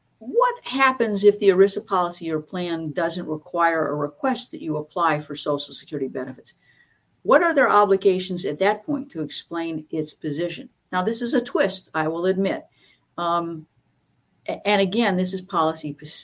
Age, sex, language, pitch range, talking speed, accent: 50-69, female, English, 150-195 Hz, 165 wpm, American